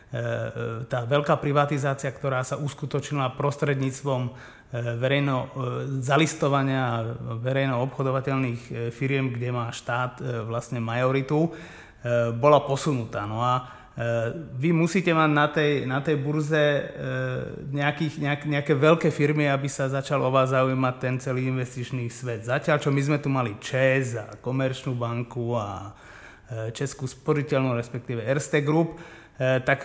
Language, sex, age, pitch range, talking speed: Czech, male, 30-49, 125-145 Hz, 125 wpm